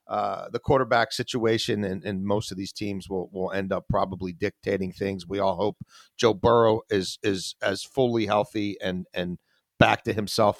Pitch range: 115-150 Hz